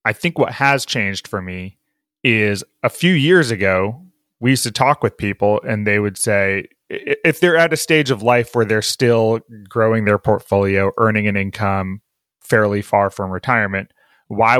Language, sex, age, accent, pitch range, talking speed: English, male, 30-49, American, 105-130 Hz, 175 wpm